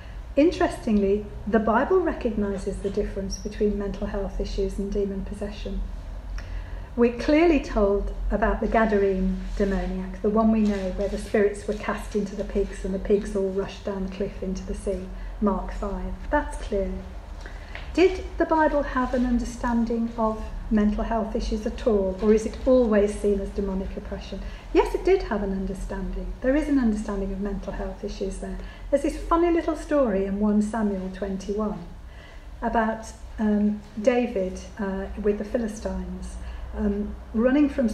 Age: 40-59